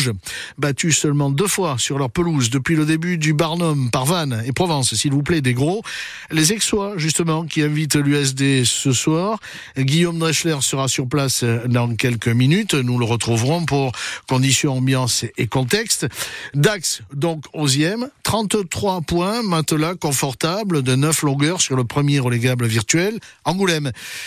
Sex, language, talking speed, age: male, French, 150 wpm, 60-79